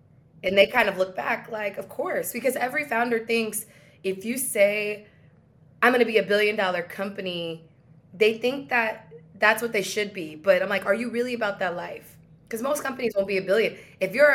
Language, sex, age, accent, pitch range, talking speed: English, female, 20-39, American, 165-220 Hz, 210 wpm